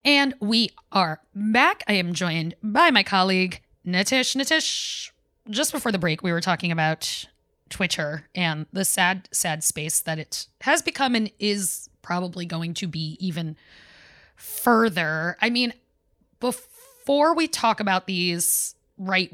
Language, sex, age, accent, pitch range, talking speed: English, female, 20-39, American, 180-235 Hz, 145 wpm